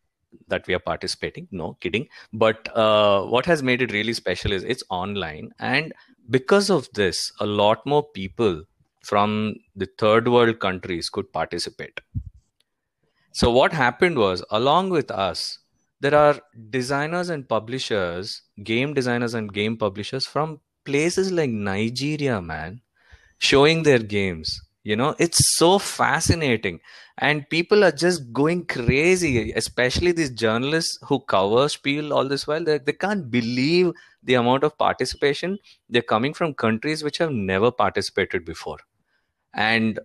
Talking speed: 140 wpm